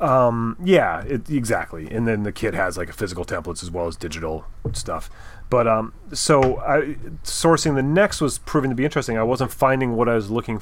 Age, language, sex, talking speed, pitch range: 30-49, English, male, 210 wpm, 100-125 Hz